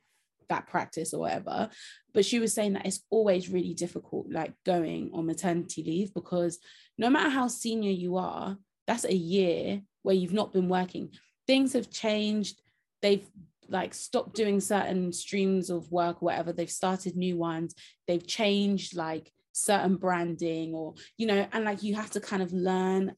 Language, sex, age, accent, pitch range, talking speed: English, female, 20-39, British, 180-215 Hz, 170 wpm